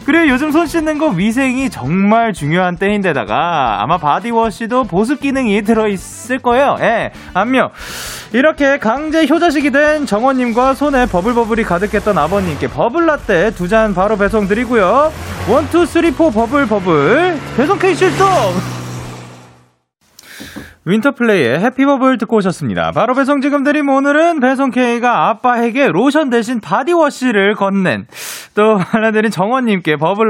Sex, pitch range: male, 175-270 Hz